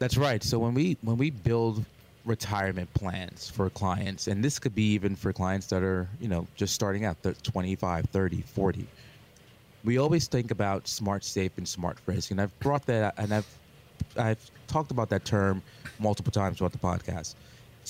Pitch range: 95-120 Hz